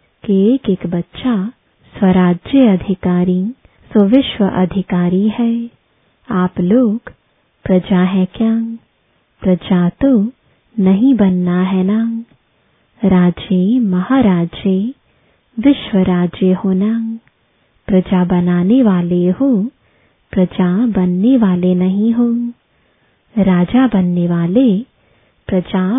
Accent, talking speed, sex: Indian, 80 wpm, female